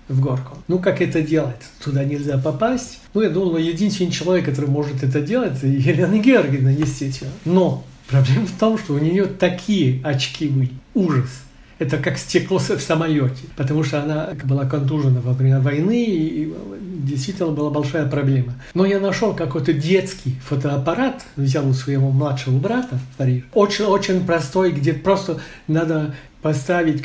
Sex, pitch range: male, 135-180 Hz